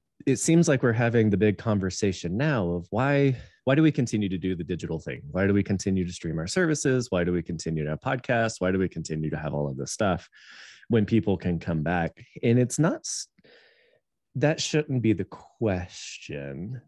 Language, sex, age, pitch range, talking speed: English, male, 20-39, 90-115 Hz, 205 wpm